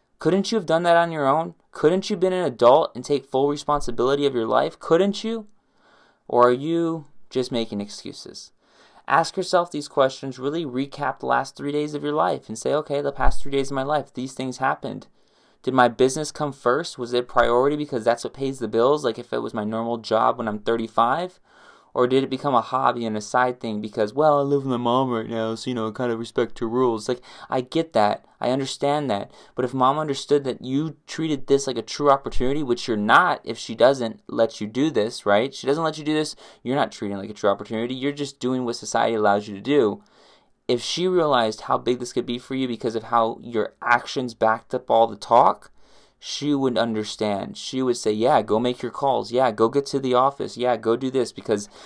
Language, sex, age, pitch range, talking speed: English, male, 20-39, 115-145 Hz, 235 wpm